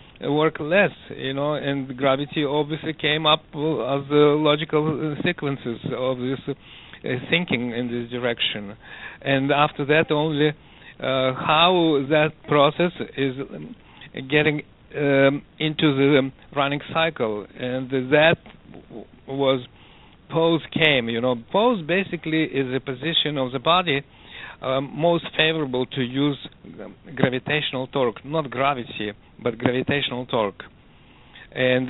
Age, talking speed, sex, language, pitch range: 50-69, 120 wpm, male, English, 130-155 Hz